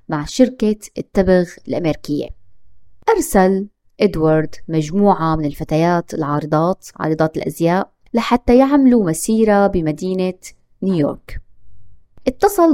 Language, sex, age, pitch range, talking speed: Arabic, female, 20-39, 165-260 Hz, 85 wpm